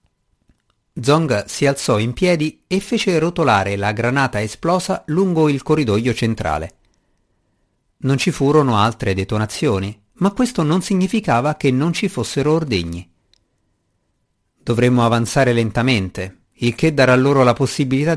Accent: native